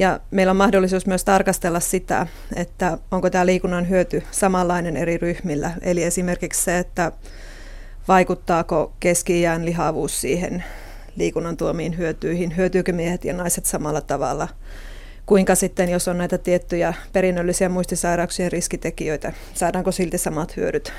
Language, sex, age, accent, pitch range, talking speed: Finnish, female, 30-49, native, 170-195 Hz, 130 wpm